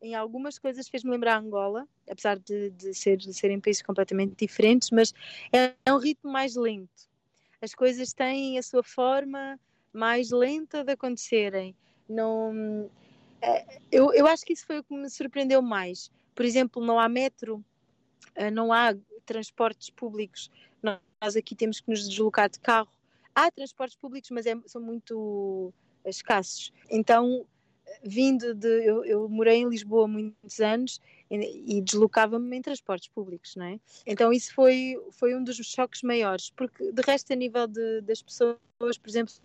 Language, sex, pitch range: Portuguese, female, 210-250 Hz